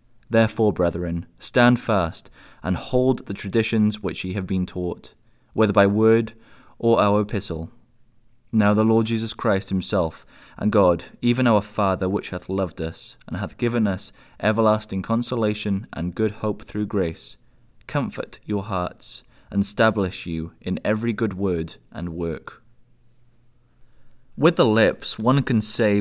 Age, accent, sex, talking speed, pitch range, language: 20-39, British, male, 145 wpm, 95-115 Hz, English